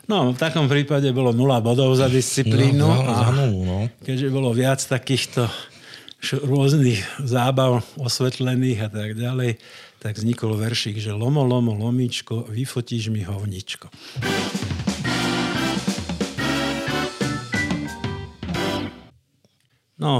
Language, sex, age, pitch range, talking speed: Slovak, male, 50-69, 110-125 Hz, 95 wpm